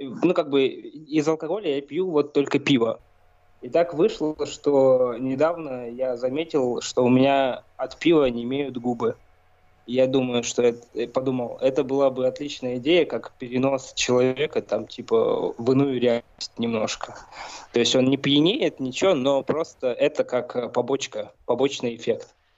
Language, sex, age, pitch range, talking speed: Russian, male, 20-39, 120-145 Hz, 150 wpm